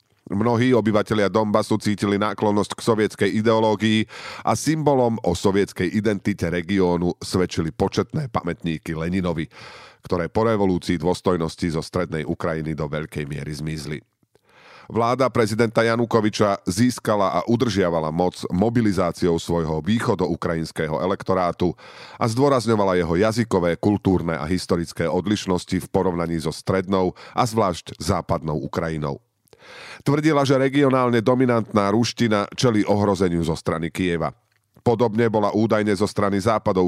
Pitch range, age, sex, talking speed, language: 85-115 Hz, 40-59, male, 115 wpm, Slovak